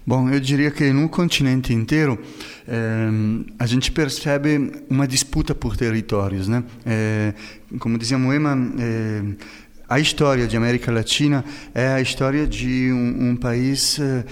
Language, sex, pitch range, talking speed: Portuguese, male, 120-155 Hz, 140 wpm